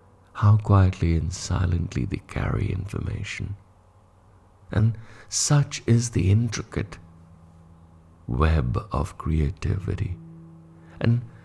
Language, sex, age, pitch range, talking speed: English, male, 60-79, 80-105 Hz, 85 wpm